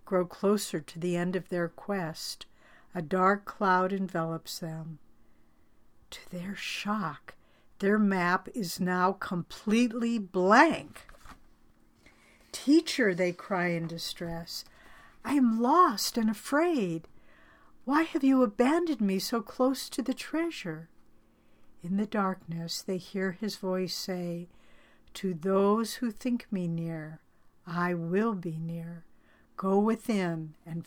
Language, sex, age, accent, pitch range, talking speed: English, female, 60-79, American, 175-210 Hz, 120 wpm